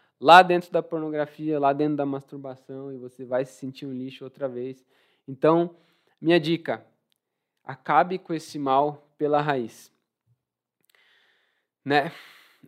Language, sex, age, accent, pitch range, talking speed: Portuguese, male, 20-39, Brazilian, 140-180 Hz, 130 wpm